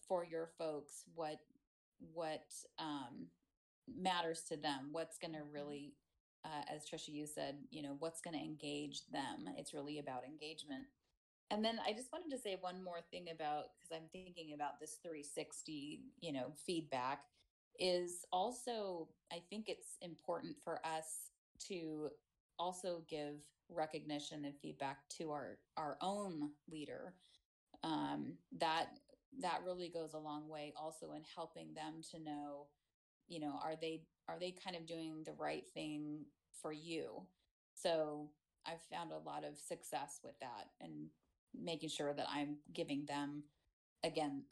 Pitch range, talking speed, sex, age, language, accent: 150-175 Hz, 150 wpm, female, 30-49, English, American